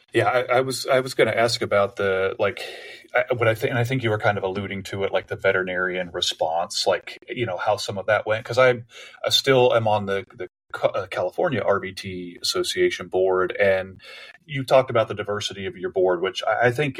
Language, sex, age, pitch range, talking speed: English, male, 30-49, 100-120 Hz, 215 wpm